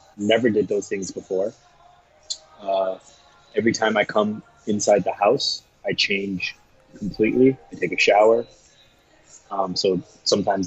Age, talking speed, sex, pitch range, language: 20-39, 130 wpm, male, 95-115 Hz, English